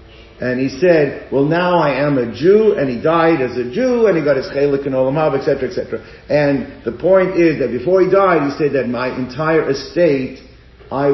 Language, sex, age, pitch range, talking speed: English, male, 50-69, 125-160 Hz, 210 wpm